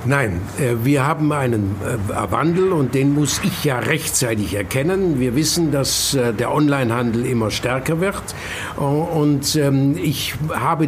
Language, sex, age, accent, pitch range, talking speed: German, male, 60-79, German, 130-165 Hz, 125 wpm